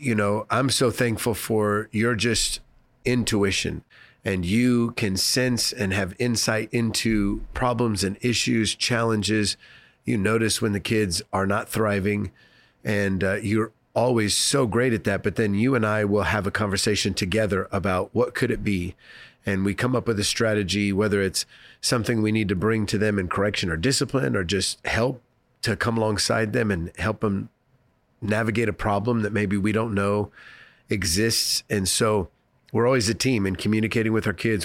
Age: 30-49